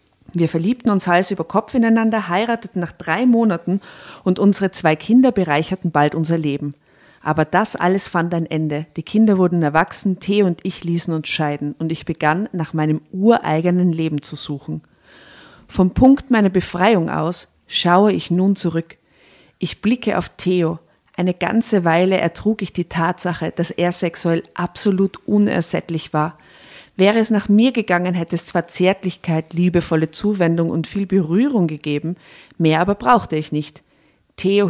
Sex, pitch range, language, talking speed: female, 165-210 Hz, German, 155 wpm